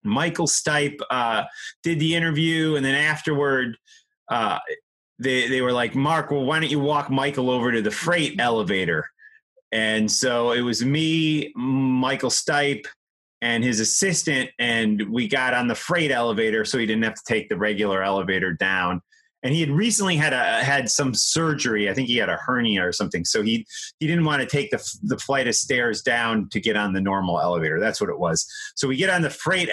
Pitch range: 115-160 Hz